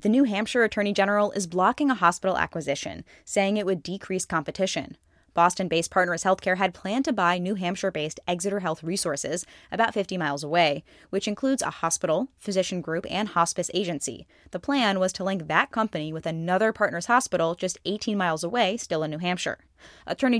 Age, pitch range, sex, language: 10-29, 170-210 Hz, female, English